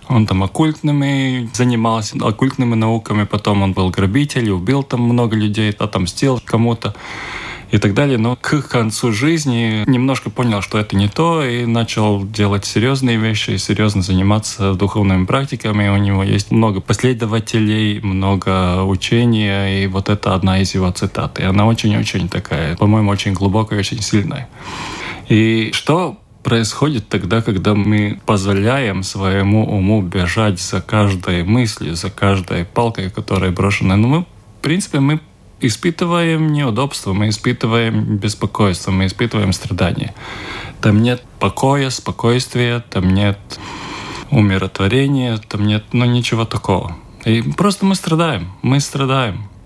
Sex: male